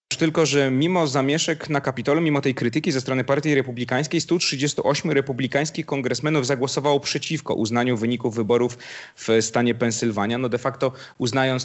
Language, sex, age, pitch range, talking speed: Polish, male, 30-49, 115-140 Hz, 145 wpm